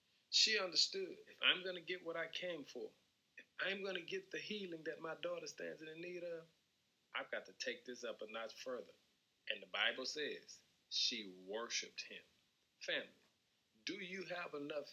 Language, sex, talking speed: English, male, 185 wpm